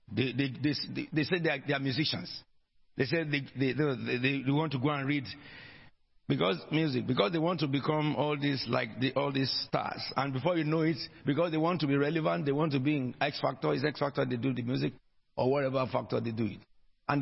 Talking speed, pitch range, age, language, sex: 240 wpm, 105-150 Hz, 50-69, English, male